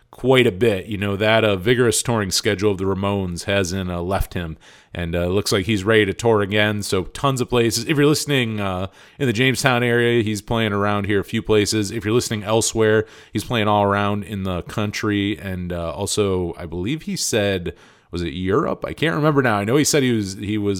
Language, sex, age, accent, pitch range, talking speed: English, male, 30-49, American, 95-115 Hz, 230 wpm